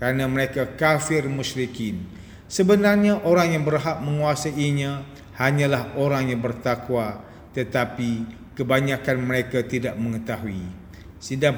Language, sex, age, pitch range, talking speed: English, male, 50-69, 130-165 Hz, 100 wpm